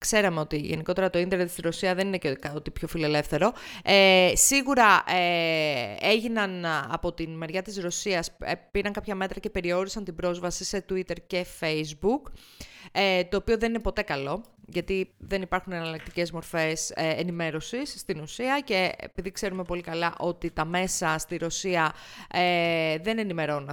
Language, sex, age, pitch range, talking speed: Greek, female, 30-49, 170-215 Hz, 155 wpm